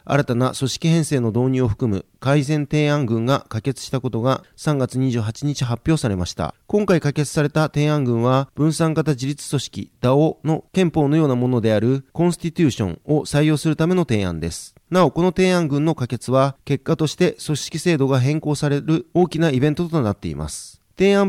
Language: Japanese